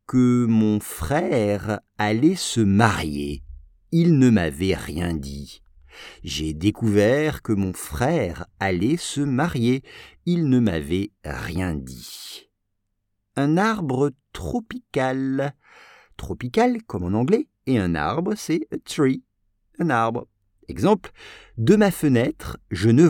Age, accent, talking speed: 50-69, French, 115 wpm